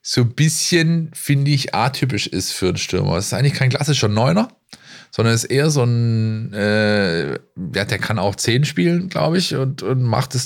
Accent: German